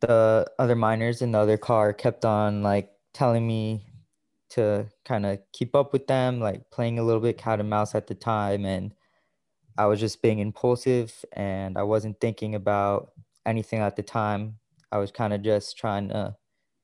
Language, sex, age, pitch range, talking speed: English, male, 20-39, 100-115 Hz, 185 wpm